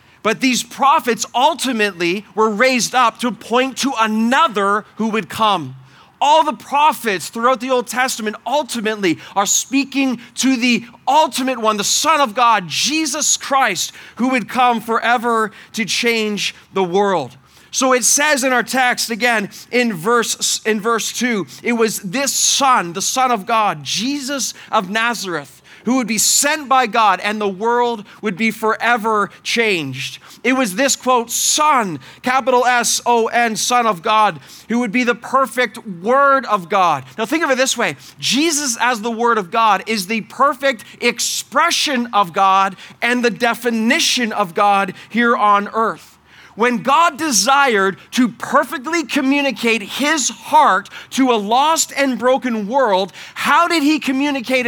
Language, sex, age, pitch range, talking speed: English, male, 30-49, 210-260 Hz, 155 wpm